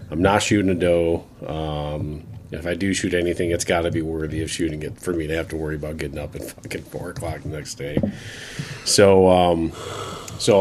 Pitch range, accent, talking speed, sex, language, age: 85-110 Hz, American, 215 wpm, male, English, 30-49